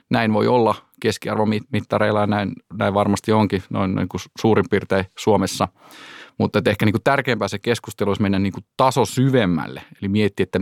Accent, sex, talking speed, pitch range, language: native, male, 170 wpm, 100-115 Hz, Finnish